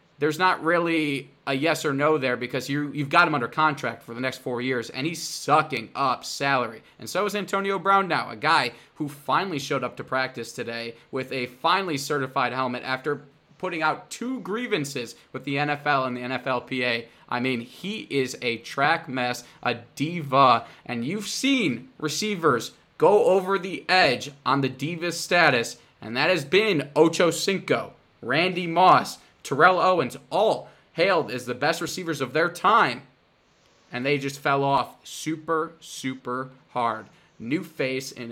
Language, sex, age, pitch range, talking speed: English, male, 20-39, 125-160 Hz, 170 wpm